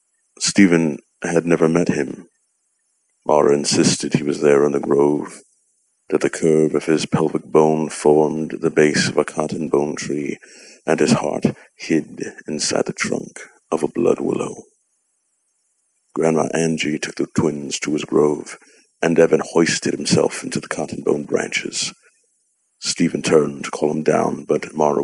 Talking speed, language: 155 wpm, English